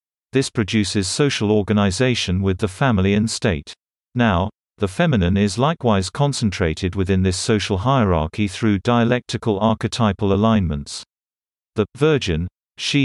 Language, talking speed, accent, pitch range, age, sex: English, 120 wpm, British, 95-120 Hz, 40-59, male